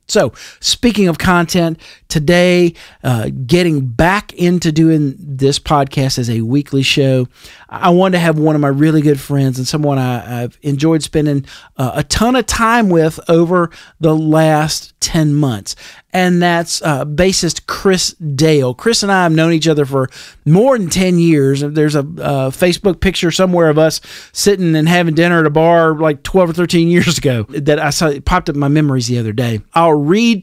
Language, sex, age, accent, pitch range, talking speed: English, male, 40-59, American, 140-175 Hz, 185 wpm